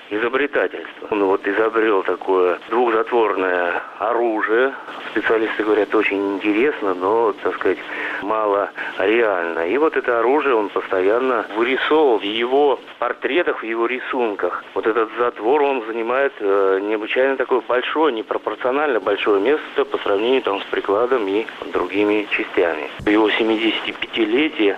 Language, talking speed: Russian, 125 wpm